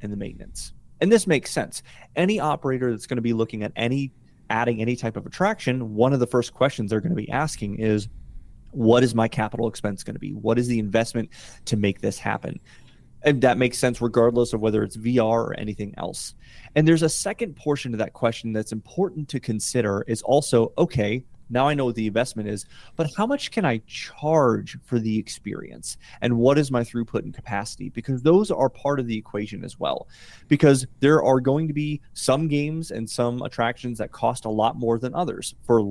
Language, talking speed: English, 210 wpm